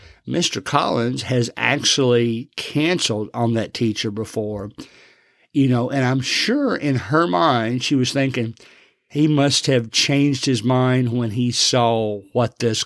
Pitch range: 115-145 Hz